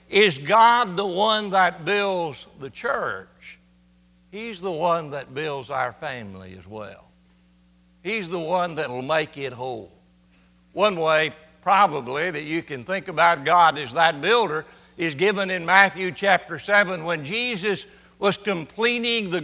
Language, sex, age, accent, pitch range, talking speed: English, male, 60-79, American, 145-205 Hz, 150 wpm